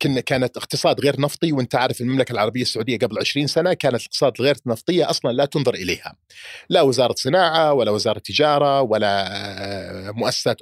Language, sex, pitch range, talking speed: Arabic, male, 105-140 Hz, 160 wpm